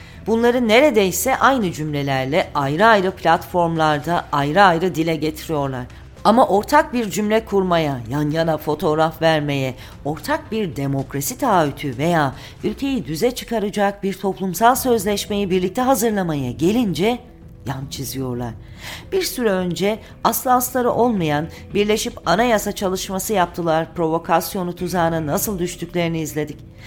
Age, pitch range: 40-59, 150-205 Hz